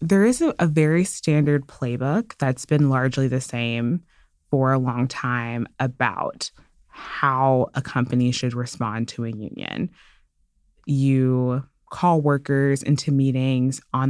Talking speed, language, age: 130 wpm, English, 20-39